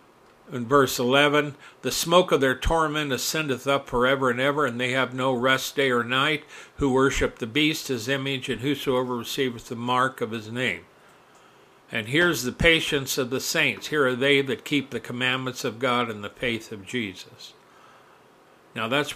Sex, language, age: male, English, 60-79